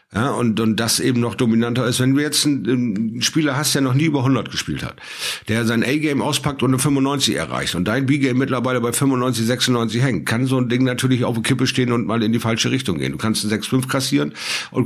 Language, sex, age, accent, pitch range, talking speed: German, male, 50-69, German, 110-135 Hz, 240 wpm